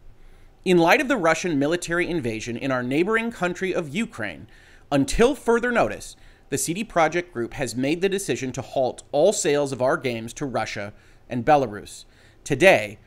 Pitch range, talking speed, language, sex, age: 125-195 Hz, 165 wpm, English, male, 30-49